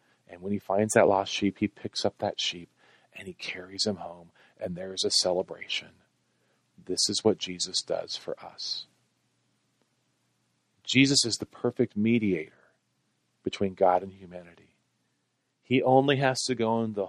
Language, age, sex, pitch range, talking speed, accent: English, 40-59, male, 95-120 Hz, 160 wpm, American